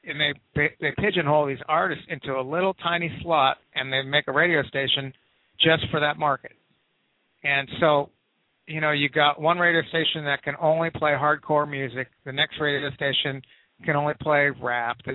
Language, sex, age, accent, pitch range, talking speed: English, male, 50-69, American, 140-165 Hz, 180 wpm